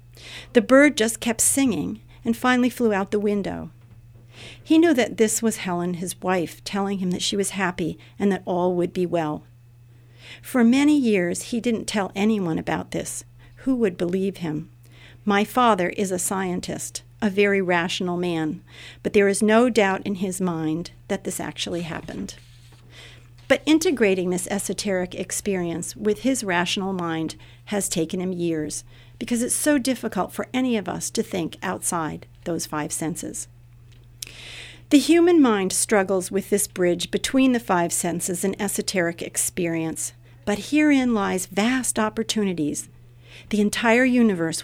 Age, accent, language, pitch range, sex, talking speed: 50-69, American, English, 155-210 Hz, female, 155 wpm